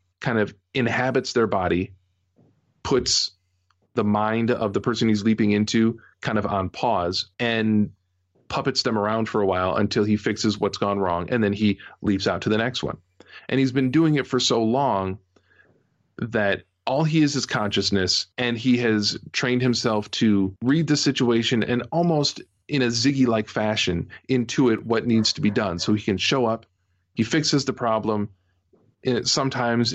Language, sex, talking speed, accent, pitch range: English, male, 175 wpm, American, 95-125 Hz